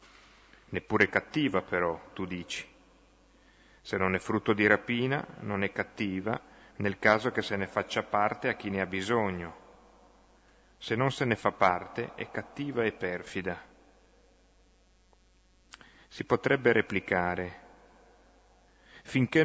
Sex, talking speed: male, 125 wpm